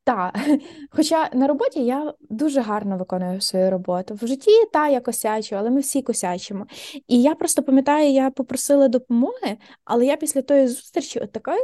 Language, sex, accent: Ukrainian, female, native